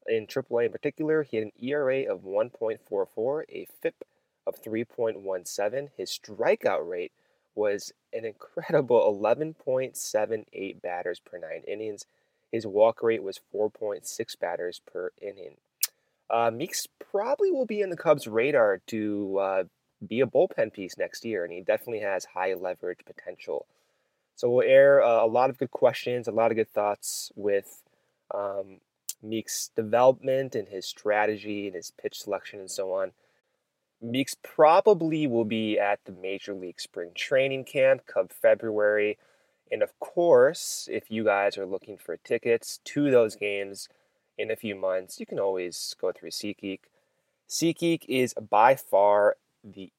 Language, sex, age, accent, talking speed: English, male, 20-39, American, 150 wpm